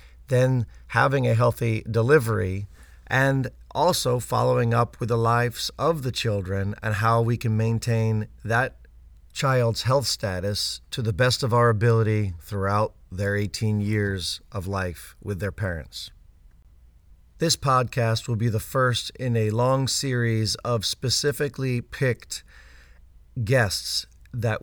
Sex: male